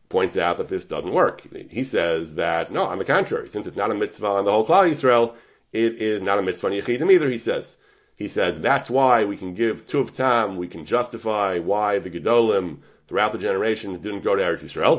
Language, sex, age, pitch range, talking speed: English, male, 40-59, 110-135 Hz, 215 wpm